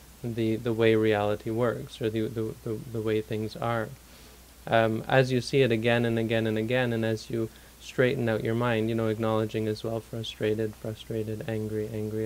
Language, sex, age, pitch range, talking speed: English, male, 20-39, 110-125 Hz, 190 wpm